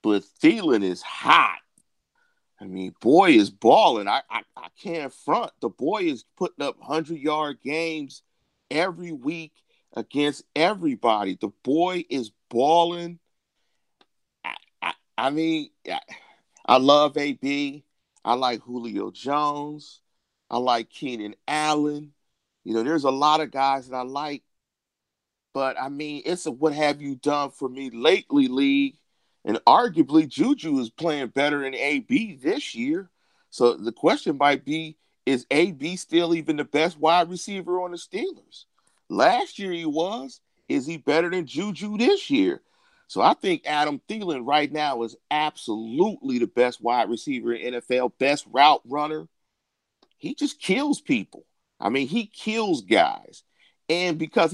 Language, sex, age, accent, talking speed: English, male, 40-59, American, 140 wpm